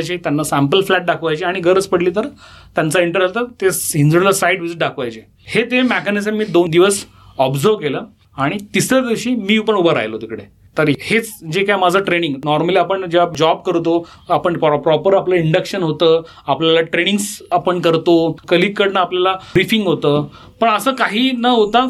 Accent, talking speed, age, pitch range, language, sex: native, 35 wpm, 30-49, 155-205 Hz, Marathi, male